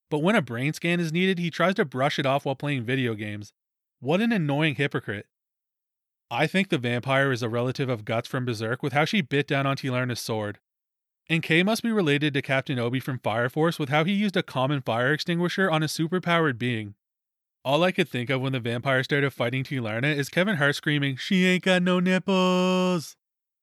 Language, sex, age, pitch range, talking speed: English, male, 30-49, 130-165 Hz, 210 wpm